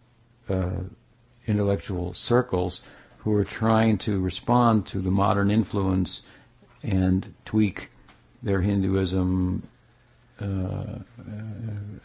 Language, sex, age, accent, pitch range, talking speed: English, male, 60-79, American, 95-115 Hz, 85 wpm